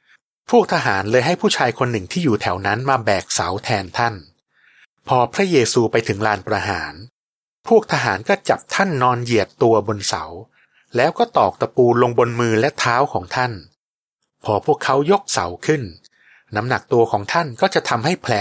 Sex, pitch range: male, 105-150 Hz